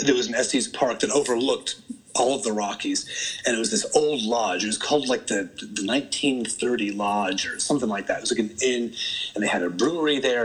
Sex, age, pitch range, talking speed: male, 30-49, 105-145 Hz, 230 wpm